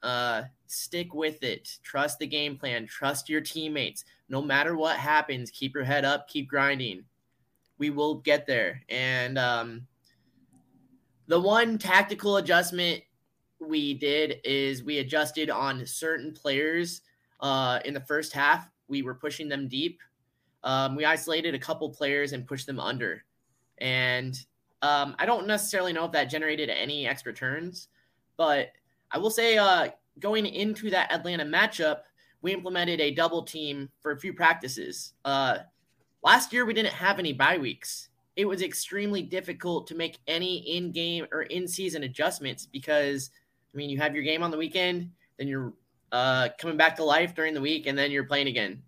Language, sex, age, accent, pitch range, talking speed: English, male, 20-39, American, 140-170 Hz, 165 wpm